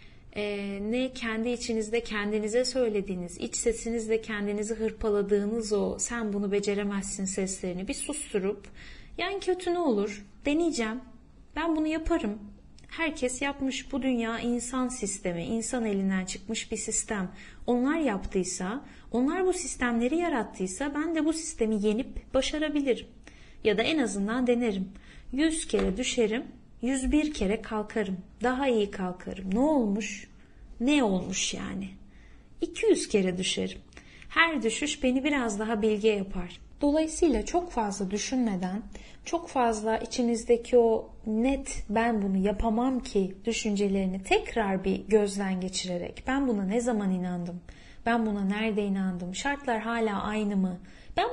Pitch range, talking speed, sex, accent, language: 205-255 Hz, 125 wpm, female, native, Turkish